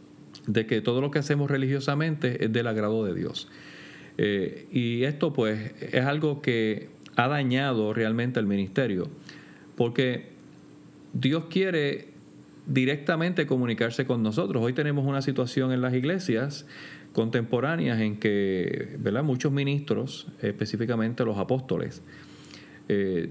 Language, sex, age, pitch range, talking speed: Spanish, male, 40-59, 110-135 Hz, 120 wpm